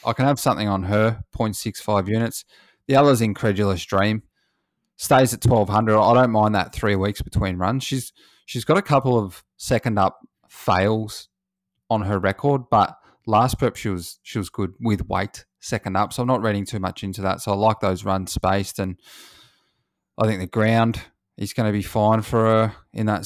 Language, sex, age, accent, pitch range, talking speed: English, male, 20-39, Australian, 95-115 Hz, 195 wpm